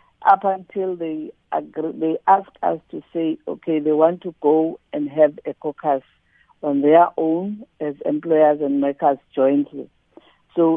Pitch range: 155-195 Hz